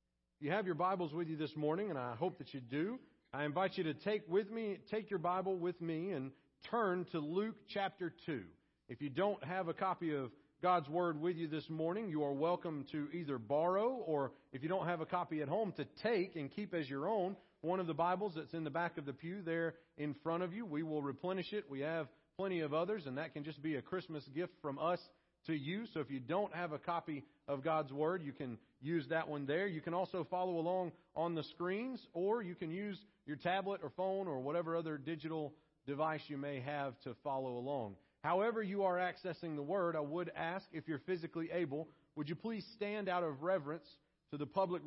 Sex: male